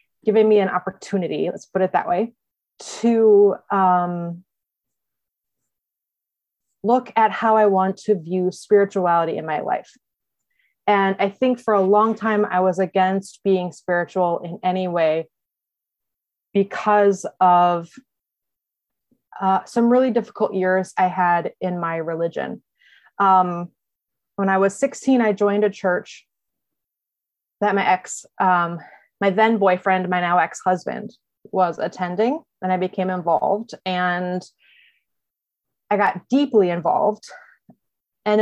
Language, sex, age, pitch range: English, female, 20-39, 180-210 Hz